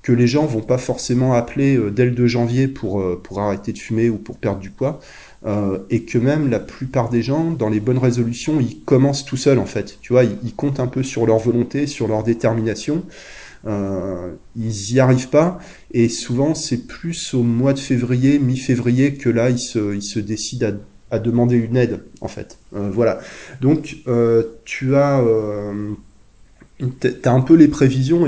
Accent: French